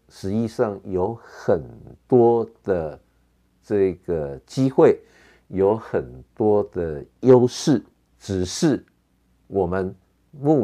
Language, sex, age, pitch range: Chinese, male, 50-69, 85-125 Hz